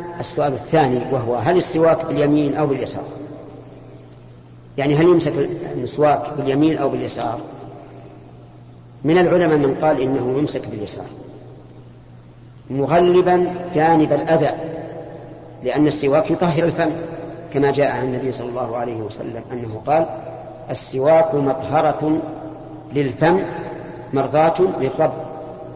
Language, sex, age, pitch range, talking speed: Arabic, female, 50-69, 120-160 Hz, 100 wpm